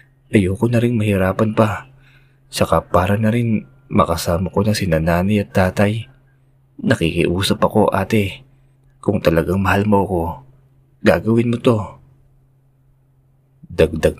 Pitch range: 80-135 Hz